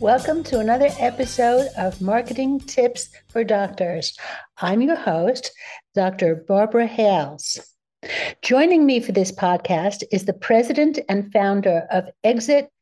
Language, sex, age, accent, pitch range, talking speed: English, female, 60-79, American, 210-270 Hz, 125 wpm